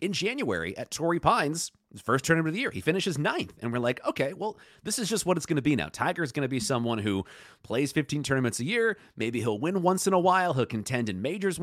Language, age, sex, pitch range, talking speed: English, 30-49, male, 105-150 Hz, 265 wpm